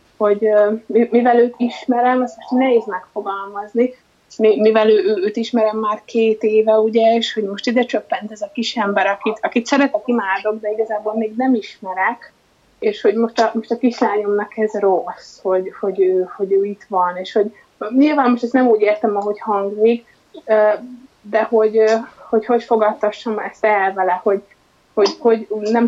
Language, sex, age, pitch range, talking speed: Hungarian, female, 20-39, 205-235 Hz, 165 wpm